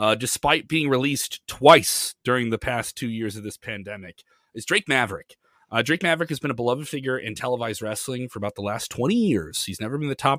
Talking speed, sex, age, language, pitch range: 220 wpm, male, 30-49, English, 105-140 Hz